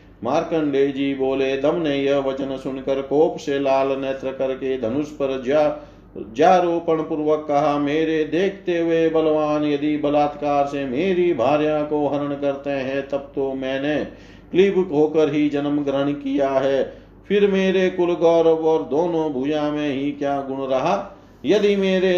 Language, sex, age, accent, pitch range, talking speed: Hindi, male, 50-69, native, 140-160 Hz, 150 wpm